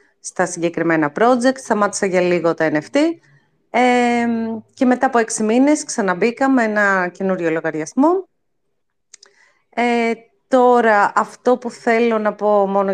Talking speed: 125 wpm